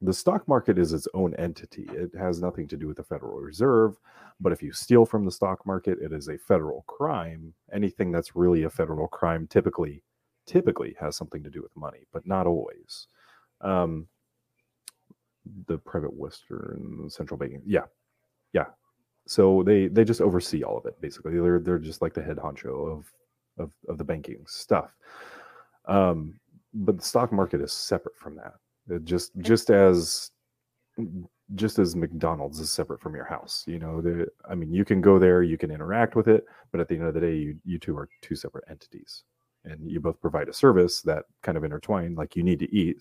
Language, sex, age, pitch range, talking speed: English, male, 30-49, 85-115 Hz, 195 wpm